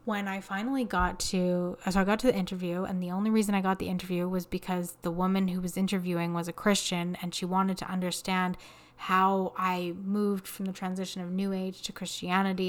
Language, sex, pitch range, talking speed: English, female, 180-205 Hz, 215 wpm